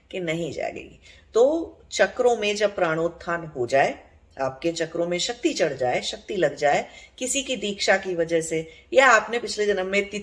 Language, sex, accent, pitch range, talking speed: English, female, Indian, 150-205 Hz, 180 wpm